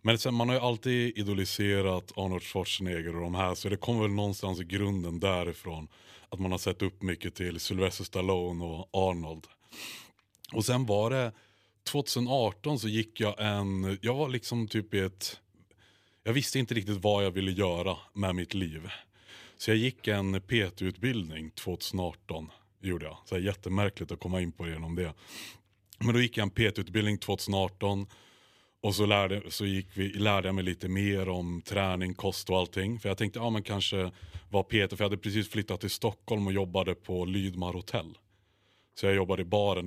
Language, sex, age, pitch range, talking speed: Swedish, male, 30-49, 90-105 Hz, 190 wpm